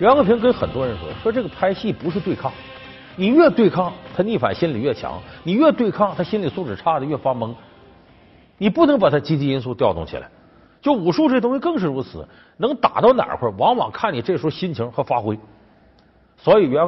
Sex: male